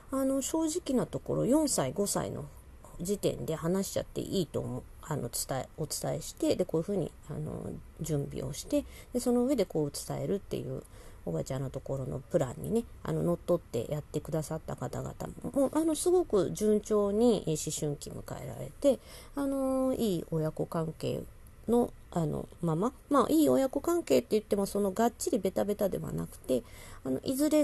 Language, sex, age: Japanese, female, 40-59